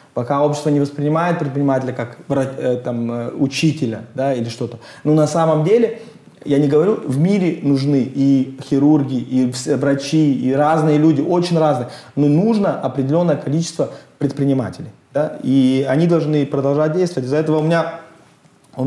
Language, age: English, 20-39